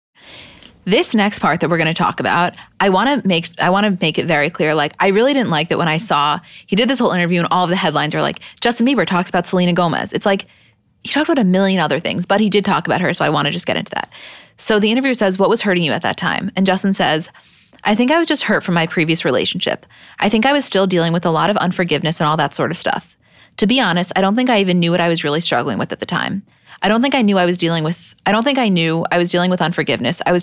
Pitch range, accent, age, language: 165-200 Hz, American, 20-39, English